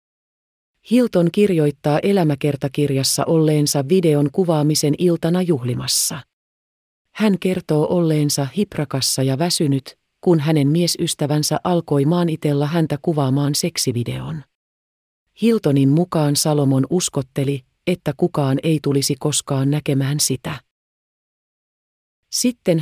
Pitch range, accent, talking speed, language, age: 140-170 Hz, native, 90 wpm, Finnish, 30-49